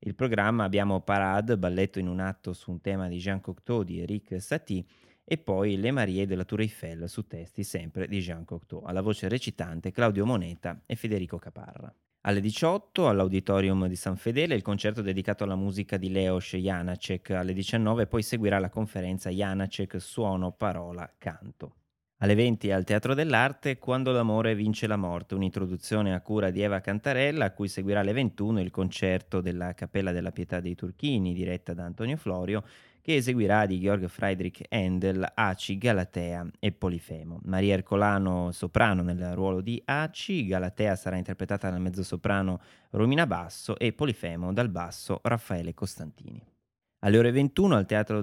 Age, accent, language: 20-39, native, Italian